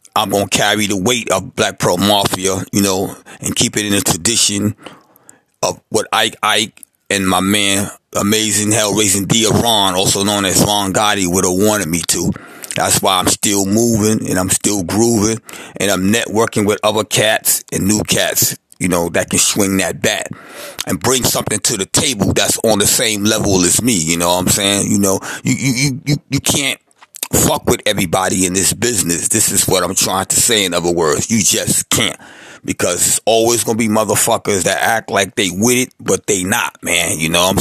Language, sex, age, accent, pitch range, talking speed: English, male, 30-49, American, 95-115 Hz, 210 wpm